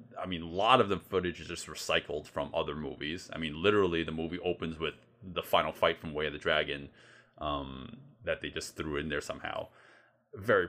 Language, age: English, 30-49